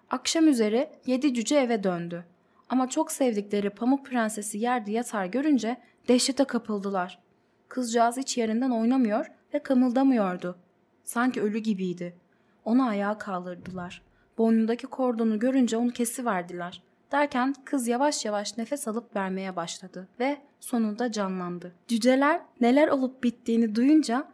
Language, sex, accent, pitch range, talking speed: Turkish, female, native, 200-265 Hz, 125 wpm